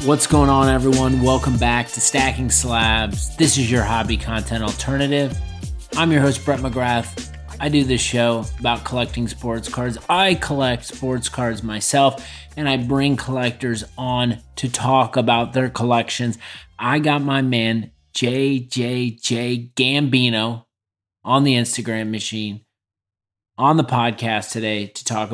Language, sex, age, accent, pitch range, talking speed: English, male, 30-49, American, 110-130 Hz, 140 wpm